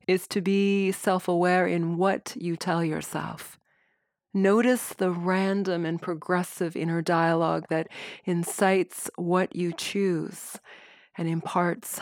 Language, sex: English, female